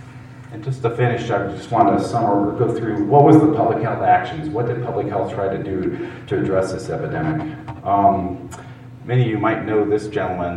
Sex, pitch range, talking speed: male, 105-125 Hz, 200 wpm